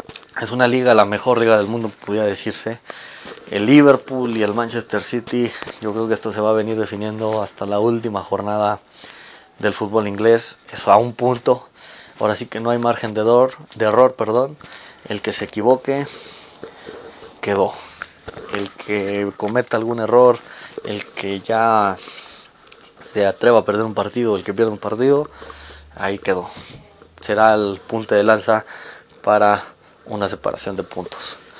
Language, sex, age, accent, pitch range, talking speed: Spanish, male, 20-39, Mexican, 105-120 Hz, 160 wpm